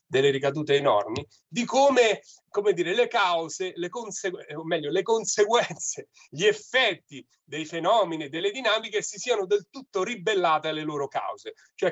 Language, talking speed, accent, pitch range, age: Italian, 145 wpm, native, 150-225 Hz, 30-49